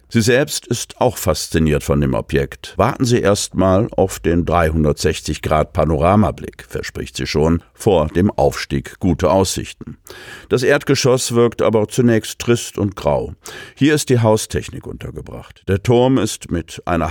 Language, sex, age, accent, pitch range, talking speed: German, male, 50-69, German, 85-115 Hz, 140 wpm